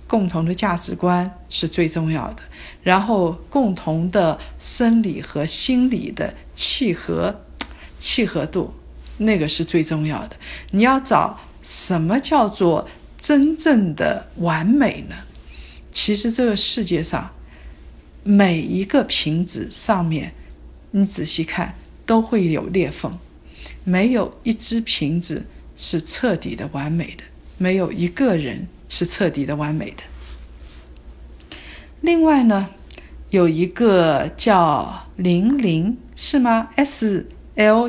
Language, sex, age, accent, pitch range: Chinese, female, 50-69, native, 165-230 Hz